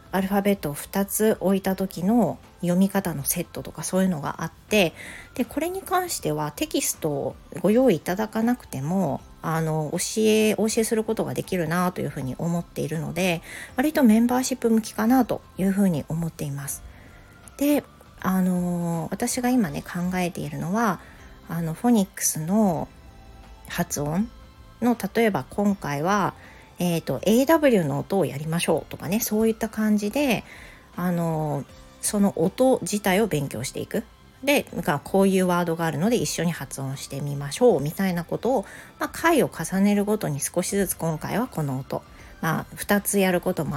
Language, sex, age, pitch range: Japanese, female, 40-59, 160-220 Hz